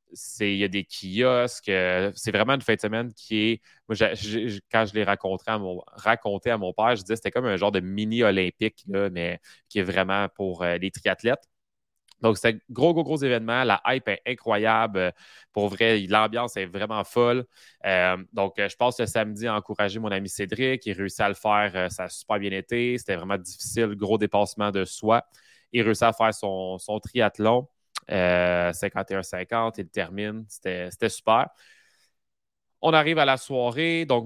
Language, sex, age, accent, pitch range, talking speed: French, male, 20-39, Canadian, 100-120 Hz, 195 wpm